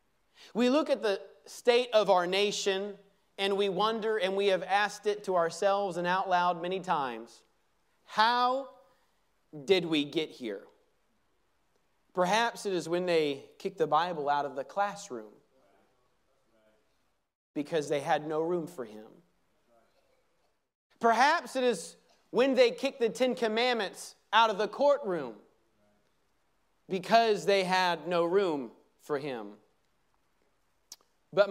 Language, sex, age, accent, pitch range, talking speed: English, male, 30-49, American, 150-215 Hz, 130 wpm